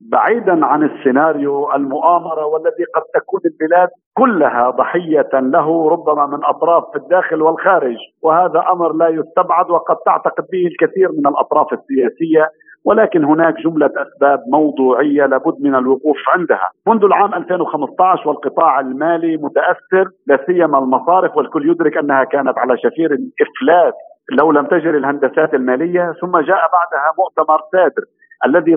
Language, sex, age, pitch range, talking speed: Arabic, male, 50-69, 150-185 Hz, 130 wpm